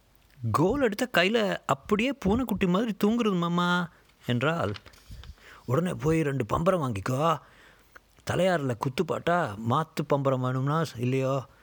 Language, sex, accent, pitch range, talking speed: Tamil, male, native, 110-155 Hz, 105 wpm